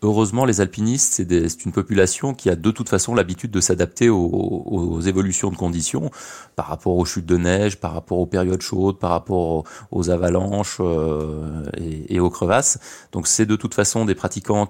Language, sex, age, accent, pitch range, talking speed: French, male, 20-39, French, 90-105 Hz, 200 wpm